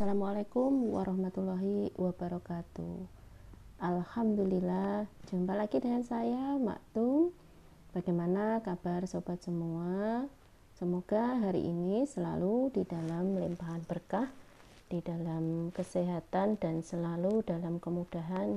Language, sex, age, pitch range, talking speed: Indonesian, female, 30-49, 175-205 Hz, 90 wpm